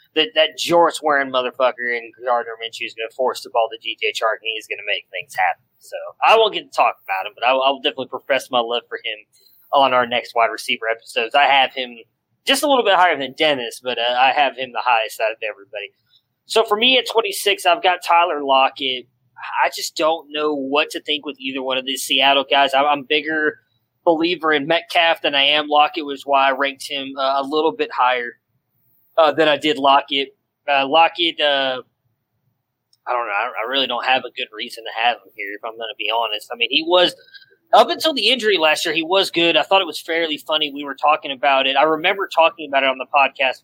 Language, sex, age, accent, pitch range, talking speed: English, male, 20-39, American, 125-160 Hz, 235 wpm